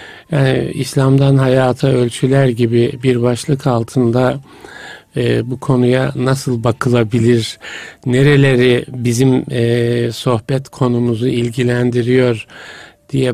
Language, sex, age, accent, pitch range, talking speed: Turkish, male, 50-69, native, 120-140 Hz, 90 wpm